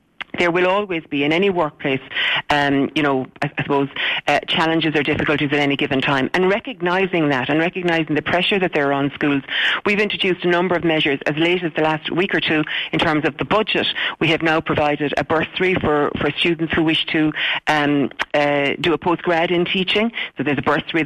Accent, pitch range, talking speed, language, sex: Irish, 150-180 Hz, 215 wpm, English, female